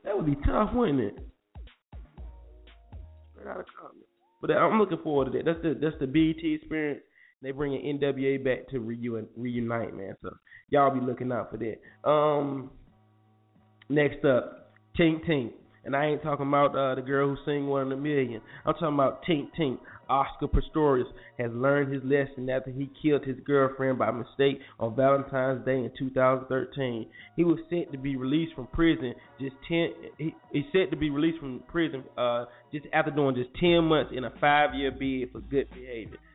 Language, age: English, 20-39